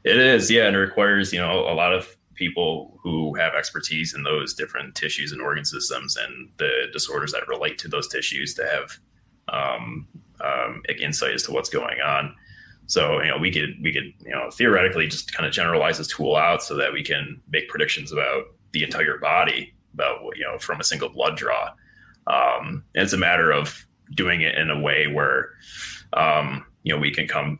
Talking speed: 200 wpm